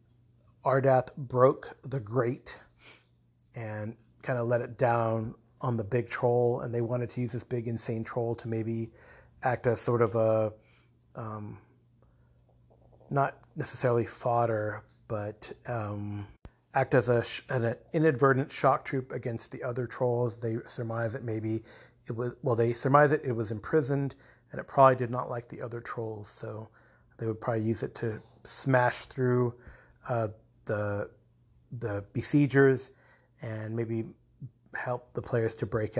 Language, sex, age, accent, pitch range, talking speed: English, male, 30-49, American, 115-130 Hz, 150 wpm